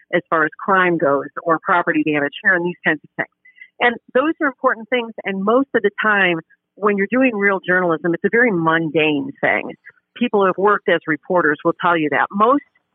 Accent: American